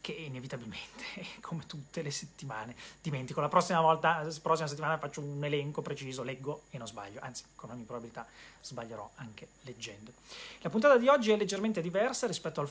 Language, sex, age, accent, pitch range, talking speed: Italian, male, 30-49, native, 140-195 Hz, 175 wpm